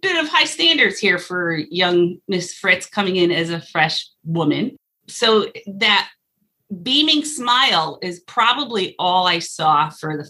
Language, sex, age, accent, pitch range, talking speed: English, female, 30-49, American, 160-200 Hz, 150 wpm